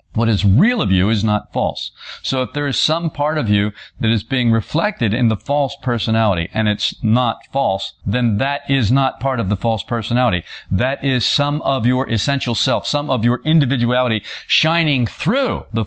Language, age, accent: English, 50-69, American